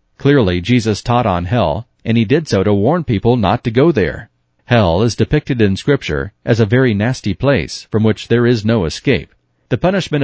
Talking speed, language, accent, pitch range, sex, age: 200 wpm, English, American, 100-125 Hz, male, 40-59